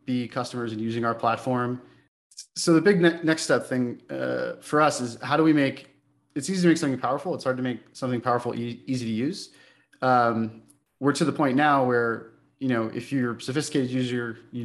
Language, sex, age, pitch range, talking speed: English, male, 20-39, 115-135 Hz, 205 wpm